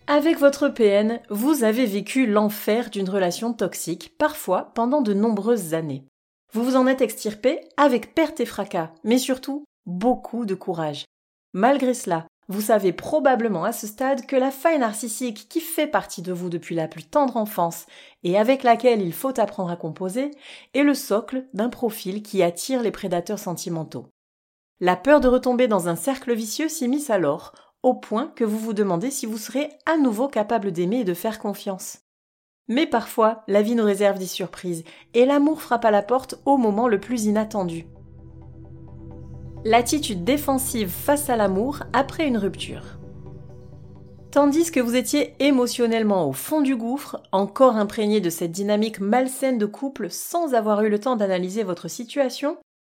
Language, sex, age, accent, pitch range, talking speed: French, female, 30-49, French, 190-260 Hz, 170 wpm